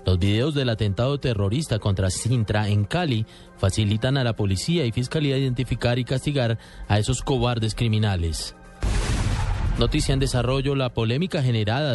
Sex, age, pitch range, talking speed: male, 30-49, 105-140 Hz, 140 wpm